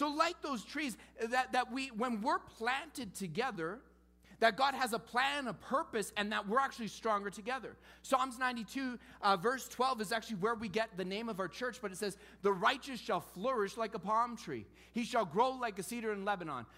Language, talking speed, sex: English, 205 wpm, male